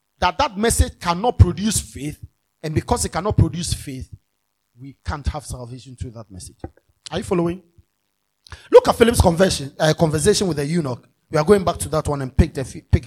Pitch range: 130-195 Hz